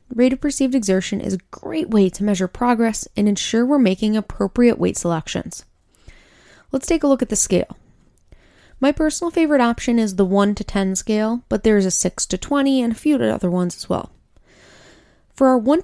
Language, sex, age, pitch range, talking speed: English, female, 20-39, 200-270 Hz, 195 wpm